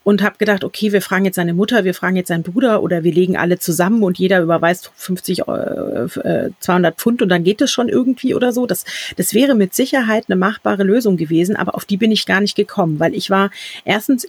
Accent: German